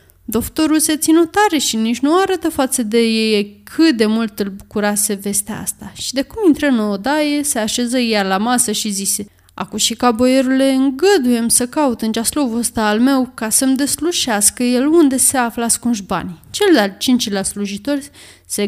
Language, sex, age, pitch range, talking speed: Romanian, female, 20-39, 220-295 Hz, 185 wpm